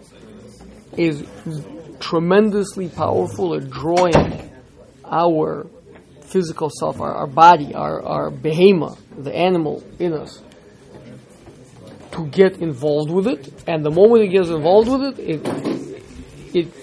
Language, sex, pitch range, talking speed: English, male, 155-205 Hz, 120 wpm